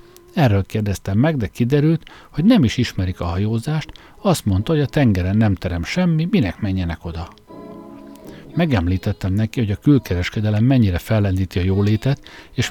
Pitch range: 95-135 Hz